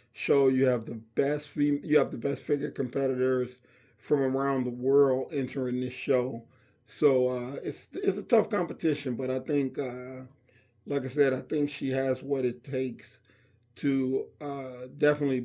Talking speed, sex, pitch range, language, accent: 165 wpm, male, 125-140 Hz, English, American